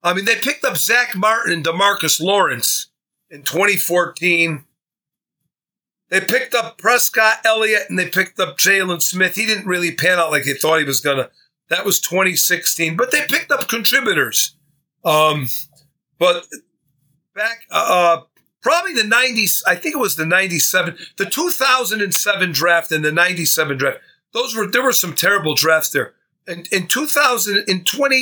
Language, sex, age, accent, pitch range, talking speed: English, male, 50-69, American, 165-215 Hz, 160 wpm